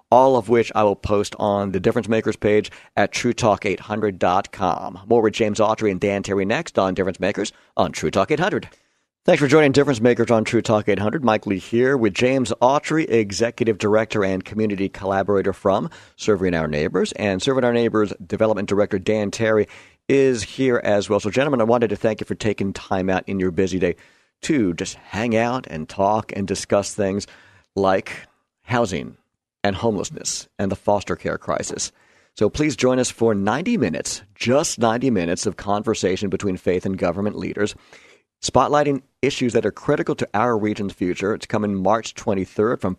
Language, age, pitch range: English, 50-69, 100-115 Hz